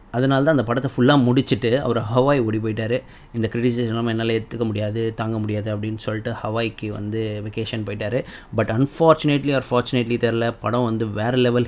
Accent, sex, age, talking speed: native, male, 30-49, 160 wpm